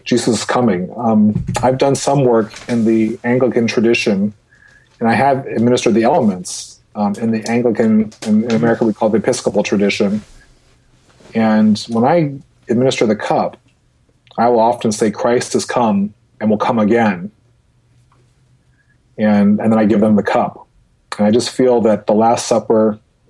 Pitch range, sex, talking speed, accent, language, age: 105-120 Hz, male, 165 wpm, American, English, 40-59